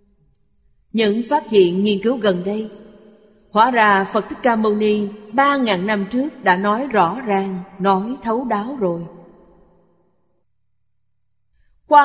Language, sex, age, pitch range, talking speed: Vietnamese, female, 30-49, 170-225 Hz, 135 wpm